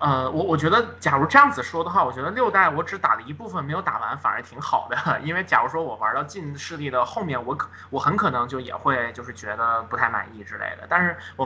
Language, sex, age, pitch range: Chinese, male, 20-39, 125-170 Hz